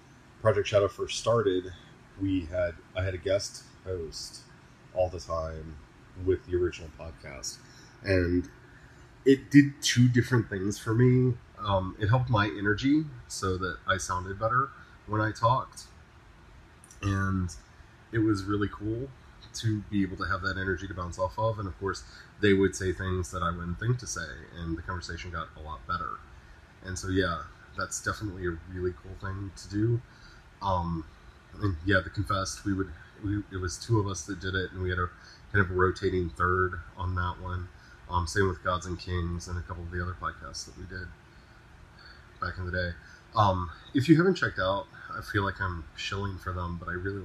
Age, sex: 30-49, male